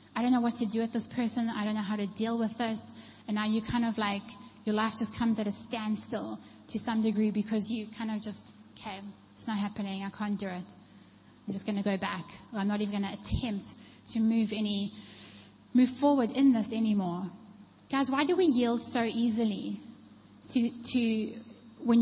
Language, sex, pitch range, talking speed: English, female, 210-245 Hz, 205 wpm